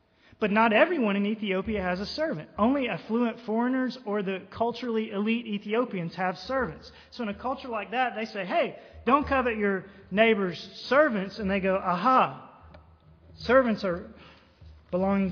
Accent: American